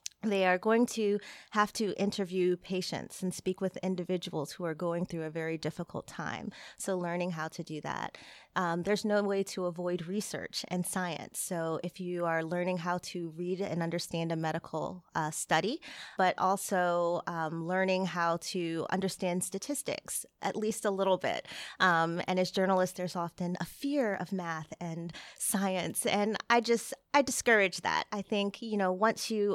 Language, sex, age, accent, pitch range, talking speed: English, female, 30-49, American, 170-210 Hz, 175 wpm